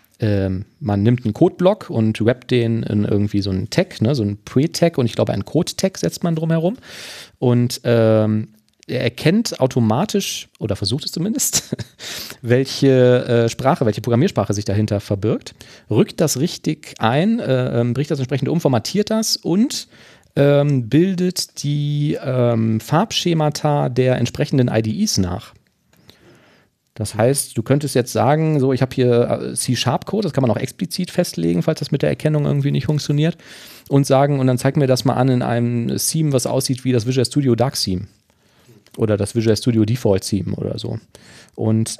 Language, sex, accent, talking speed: German, male, German, 155 wpm